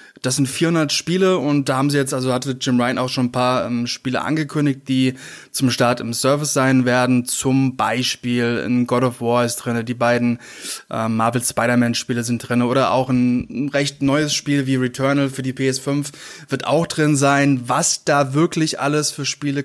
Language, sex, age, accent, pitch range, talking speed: German, male, 20-39, German, 125-140 Hz, 195 wpm